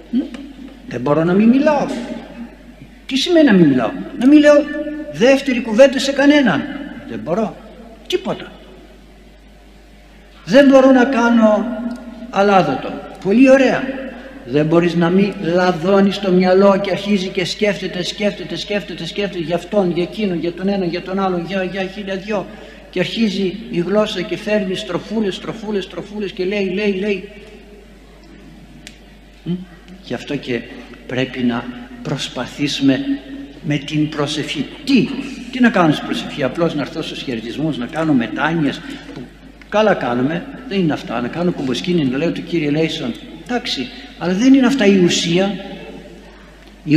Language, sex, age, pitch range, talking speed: Greek, male, 60-79, 180-260 Hz, 140 wpm